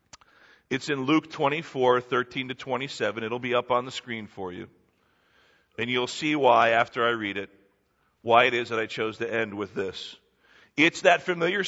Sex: male